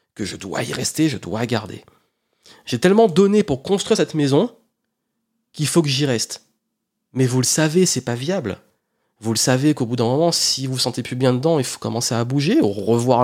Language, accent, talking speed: French, French, 215 wpm